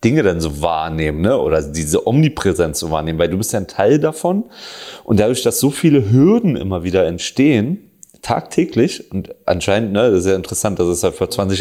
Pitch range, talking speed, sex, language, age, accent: 85-105 Hz, 200 wpm, male, German, 30-49, German